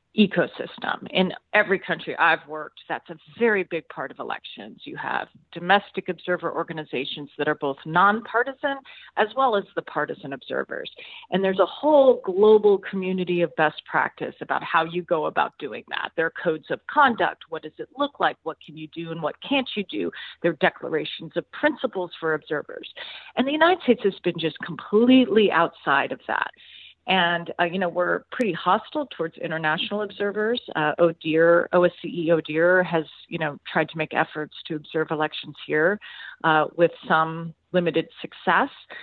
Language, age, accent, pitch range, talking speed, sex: English, 40-59, American, 160-200 Hz, 170 wpm, female